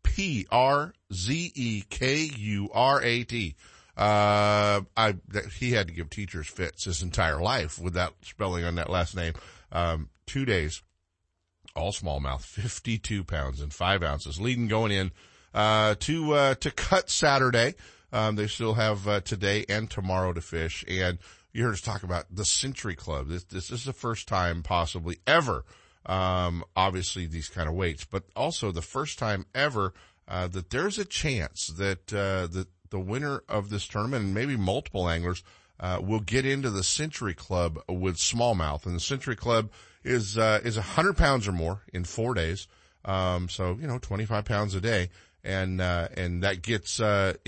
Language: English